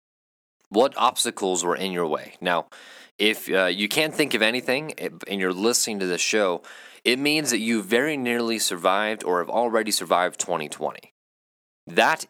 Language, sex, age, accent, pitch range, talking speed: English, male, 20-39, American, 95-120 Hz, 160 wpm